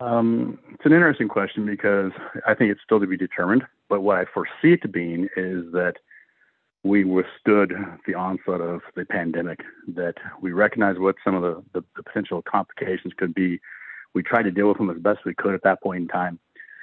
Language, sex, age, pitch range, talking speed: English, male, 50-69, 90-100 Hz, 205 wpm